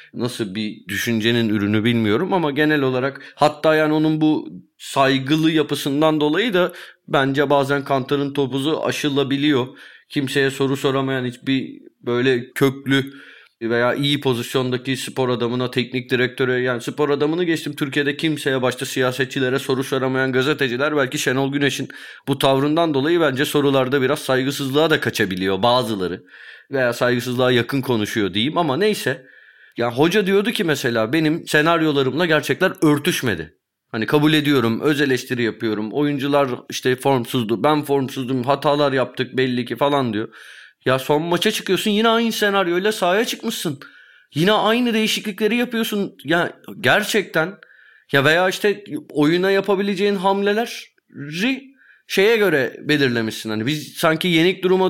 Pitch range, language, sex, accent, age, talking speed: 130-170 Hz, Turkish, male, native, 30-49, 130 wpm